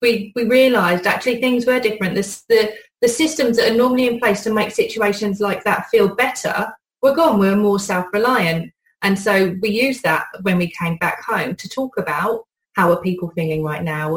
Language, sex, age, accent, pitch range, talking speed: English, female, 30-49, British, 175-225 Hz, 205 wpm